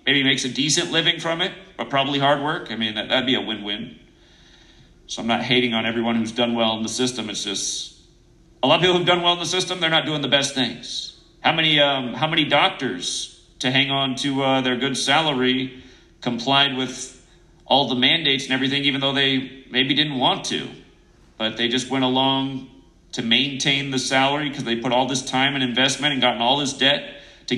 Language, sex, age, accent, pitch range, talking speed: English, male, 40-59, American, 130-155 Hz, 220 wpm